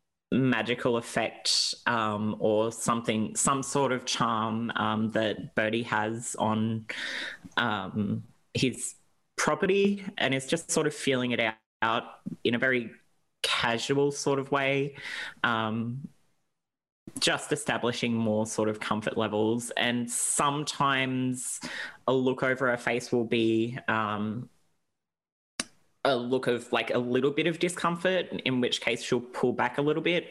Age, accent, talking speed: 20-39, Australian, 135 wpm